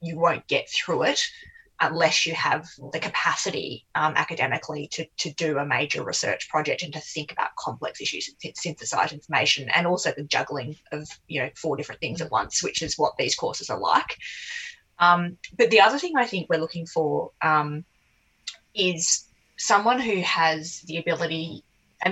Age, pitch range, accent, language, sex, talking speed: 20-39, 155-185 Hz, Australian, English, female, 175 wpm